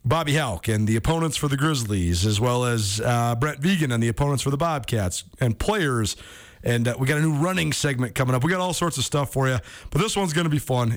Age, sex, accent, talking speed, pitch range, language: 40-59, male, American, 255 wpm, 120-155 Hz, English